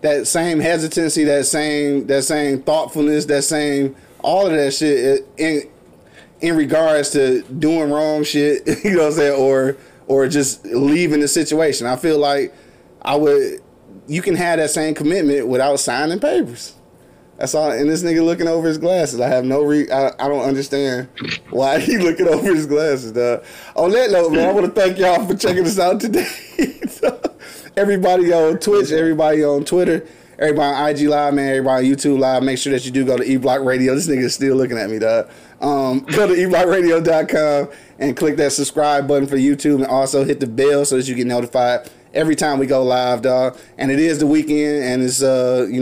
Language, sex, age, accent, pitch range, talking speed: English, male, 30-49, American, 135-155 Hz, 200 wpm